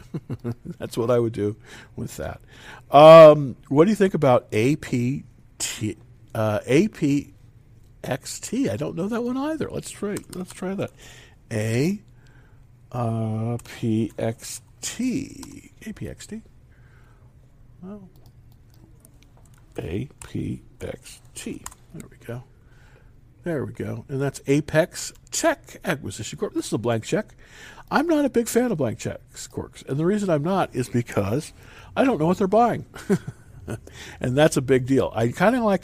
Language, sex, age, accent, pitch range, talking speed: English, male, 50-69, American, 120-160 Hz, 140 wpm